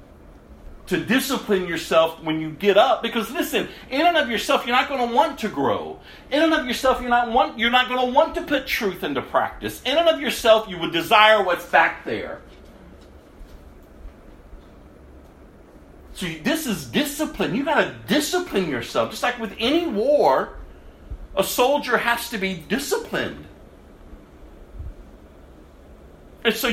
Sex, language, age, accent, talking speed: male, English, 50-69, American, 155 wpm